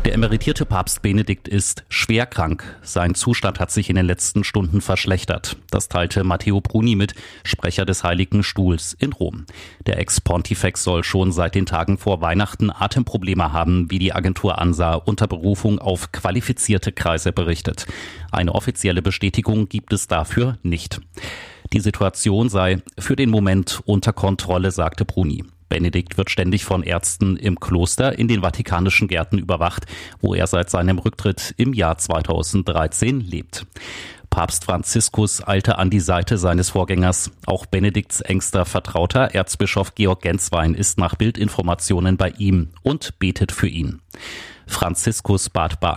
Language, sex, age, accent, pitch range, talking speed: German, male, 30-49, German, 90-105 Hz, 150 wpm